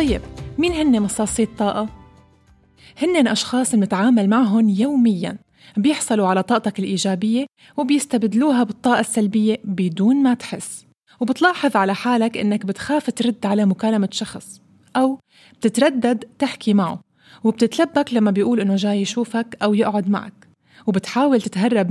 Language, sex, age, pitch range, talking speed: Arabic, female, 20-39, 205-255 Hz, 125 wpm